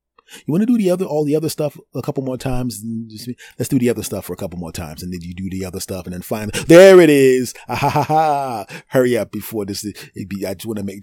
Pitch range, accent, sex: 90-125 Hz, American, male